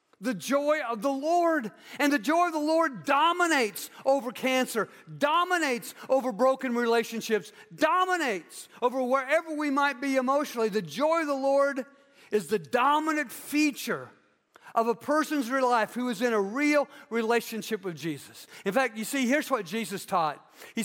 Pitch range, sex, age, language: 230-320 Hz, male, 50-69, English